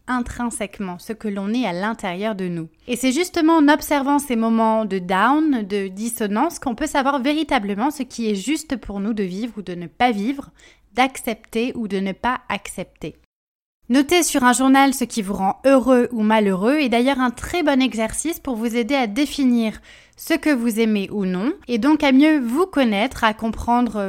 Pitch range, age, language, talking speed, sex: 210-270 Hz, 20-39, French, 195 wpm, female